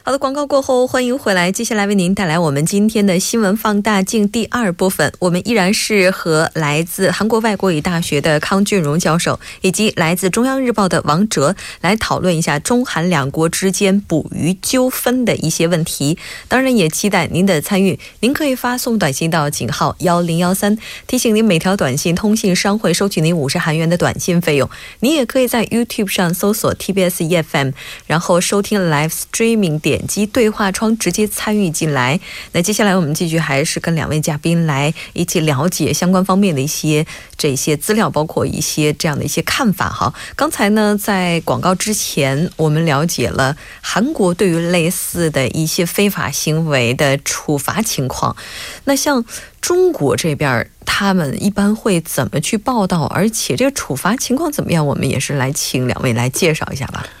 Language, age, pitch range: Korean, 20-39, 155-210 Hz